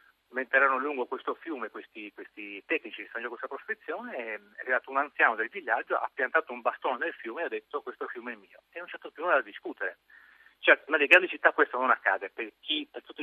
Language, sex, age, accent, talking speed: Italian, male, 40-59, native, 220 wpm